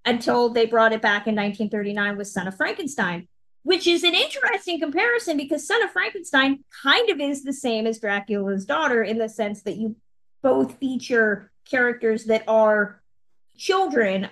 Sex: female